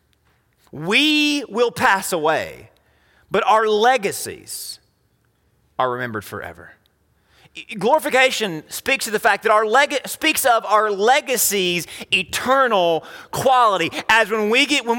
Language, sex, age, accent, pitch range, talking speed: English, male, 30-49, American, 160-250 Hz, 115 wpm